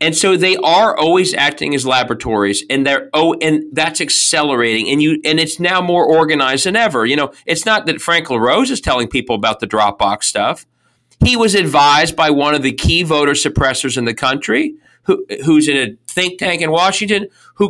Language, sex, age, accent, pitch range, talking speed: English, male, 40-59, American, 135-185 Hz, 200 wpm